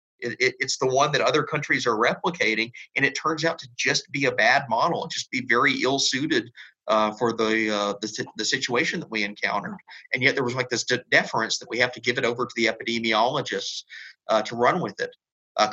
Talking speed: 220 wpm